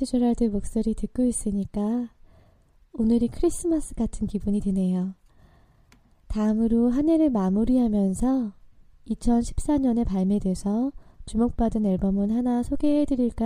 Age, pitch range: 20-39, 195-245 Hz